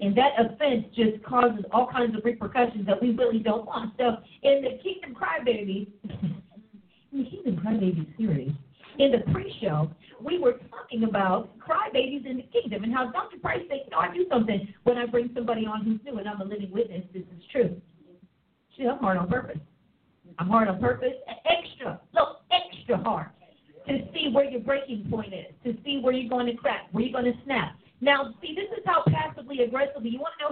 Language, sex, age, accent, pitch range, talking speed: English, female, 40-59, American, 195-265 Hz, 200 wpm